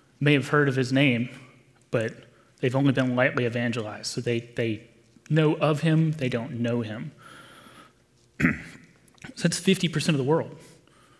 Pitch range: 125-145 Hz